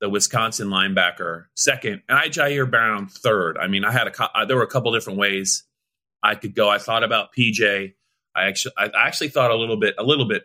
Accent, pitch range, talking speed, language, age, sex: American, 100-140 Hz, 220 wpm, English, 30-49, male